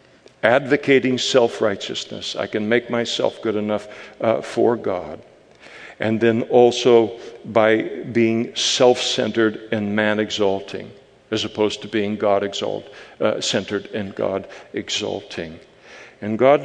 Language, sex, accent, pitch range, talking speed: English, male, American, 110-140 Hz, 105 wpm